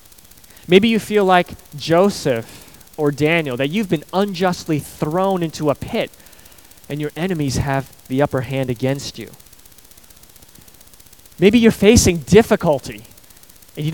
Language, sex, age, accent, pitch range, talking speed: English, male, 30-49, American, 120-175 Hz, 130 wpm